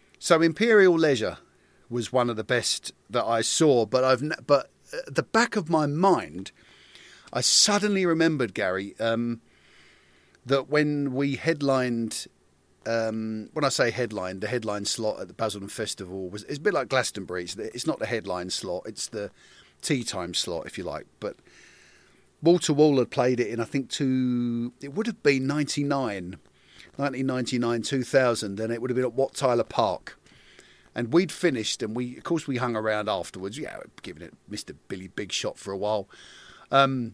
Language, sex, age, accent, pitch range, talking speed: English, male, 40-59, British, 110-145 Hz, 180 wpm